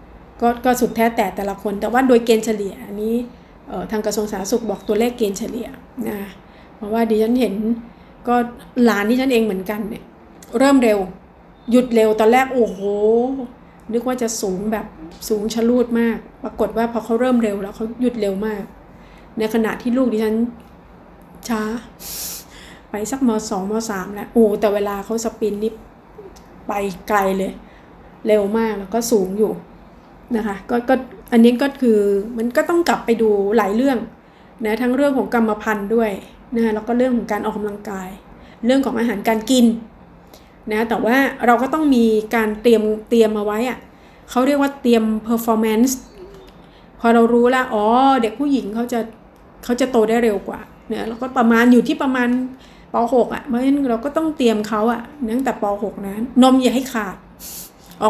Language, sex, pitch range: Thai, female, 215-240 Hz